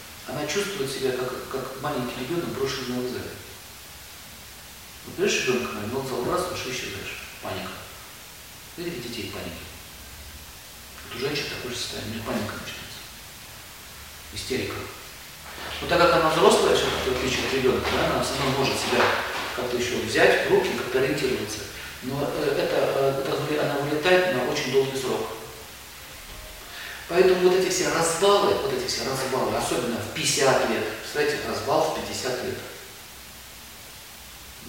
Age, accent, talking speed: 40-59, native, 145 wpm